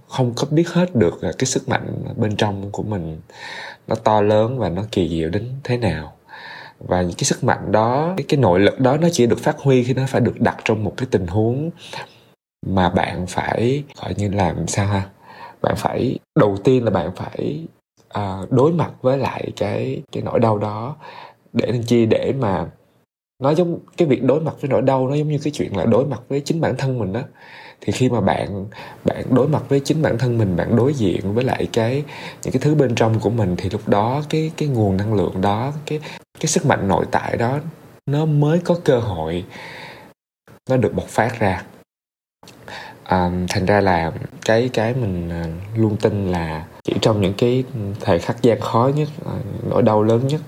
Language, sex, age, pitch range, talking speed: Vietnamese, male, 20-39, 100-135 Hz, 210 wpm